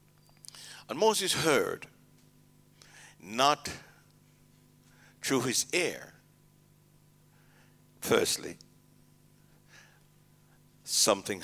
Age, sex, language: 60-79, male, English